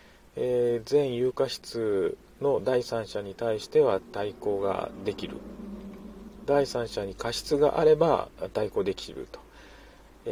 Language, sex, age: Japanese, male, 40-59